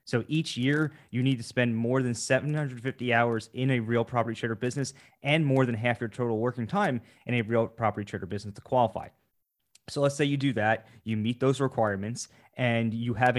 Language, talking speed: English, 205 wpm